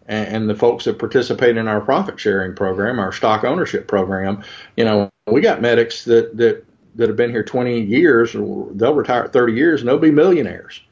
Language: English